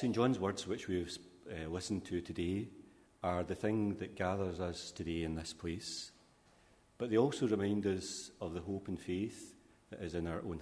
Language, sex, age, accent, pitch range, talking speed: English, male, 40-59, British, 85-100 Hz, 190 wpm